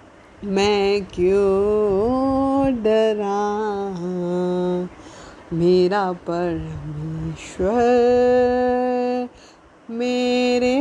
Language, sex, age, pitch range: Punjabi, female, 20-39, 235-310 Hz